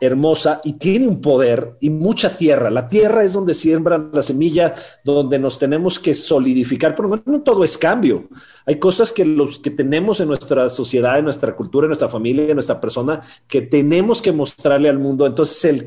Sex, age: male, 40-59